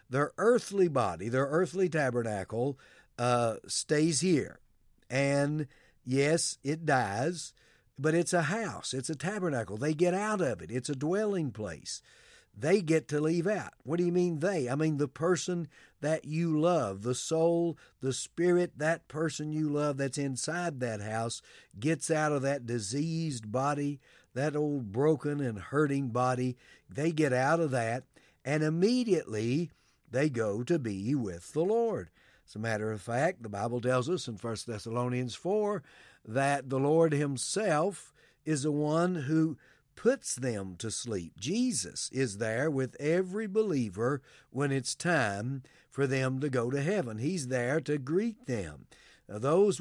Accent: American